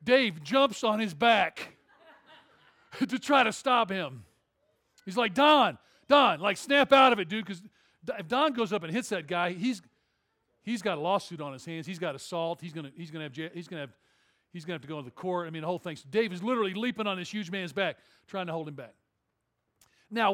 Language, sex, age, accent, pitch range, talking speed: English, male, 40-59, American, 170-245 Hz, 235 wpm